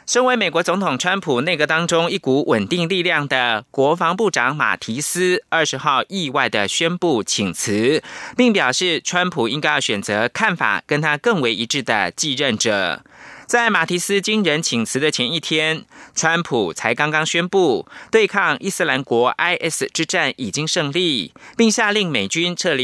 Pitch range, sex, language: 150-190 Hz, male, German